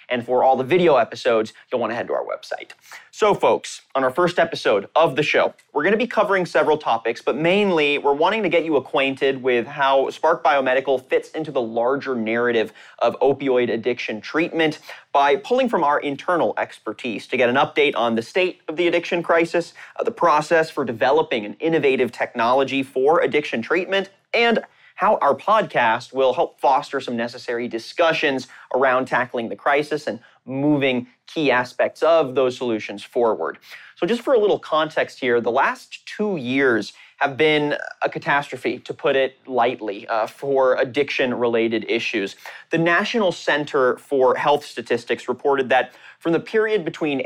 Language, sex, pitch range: English, male, 130-170 Hz